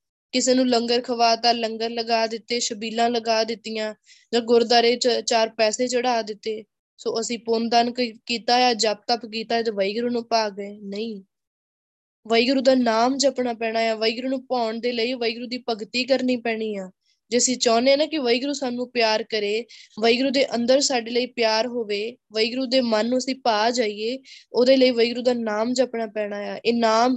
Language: Punjabi